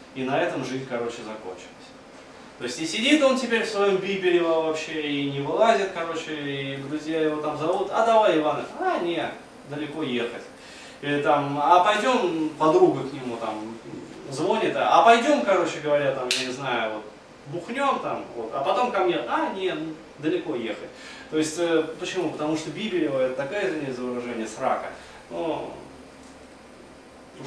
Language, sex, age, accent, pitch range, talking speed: Russian, male, 20-39, native, 140-205 Hz, 165 wpm